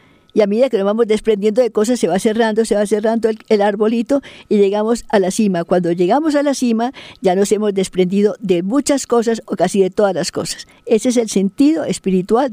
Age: 60-79